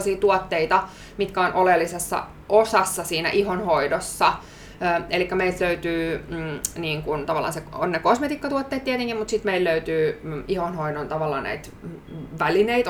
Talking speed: 130 wpm